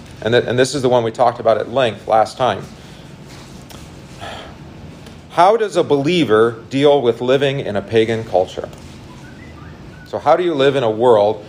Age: 40-59